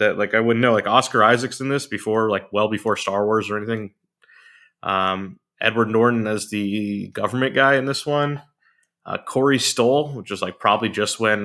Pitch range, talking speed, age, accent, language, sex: 105-130 Hz, 195 wpm, 20-39, American, English, male